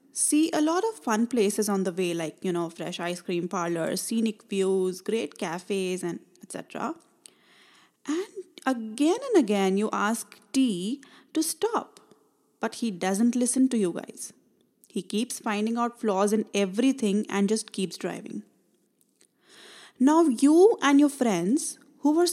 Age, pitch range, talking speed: 20-39, 205-285 Hz, 150 wpm